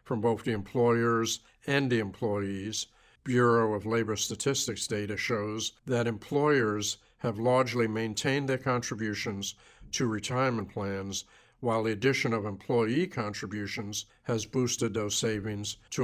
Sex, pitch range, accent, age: male, 105-120 Hz, American, 50-69